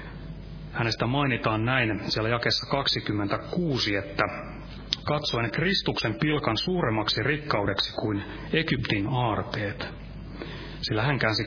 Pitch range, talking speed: 110-145 Hz, 95 wpm